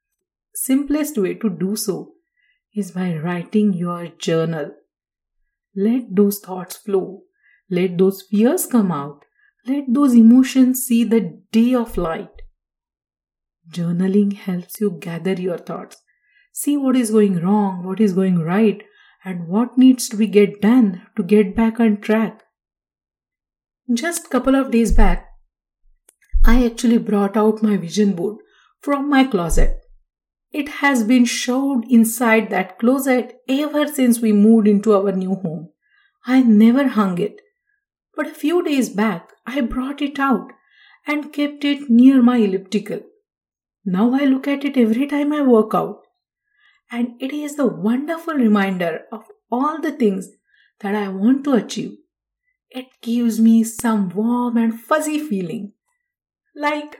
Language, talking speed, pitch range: English, 145 wpm, 205-285 Hz